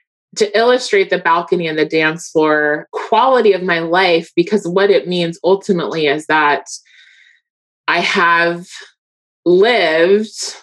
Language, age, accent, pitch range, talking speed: English, 20-39, American, 155-210 Hz, 125 wpm